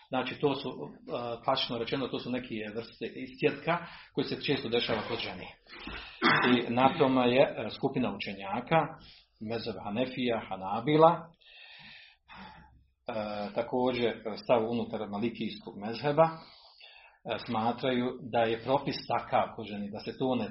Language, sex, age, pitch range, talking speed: Croatian, male, 40-59, 115-145 Hz, 120 wpm